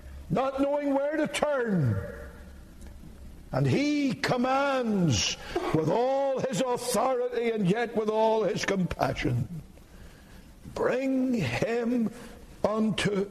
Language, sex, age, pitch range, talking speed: English, male, 60-79, 125-205 Hz, 95 wpm